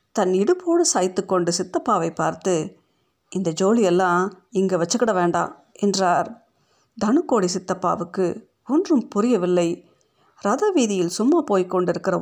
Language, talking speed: Tamil, 105 wpm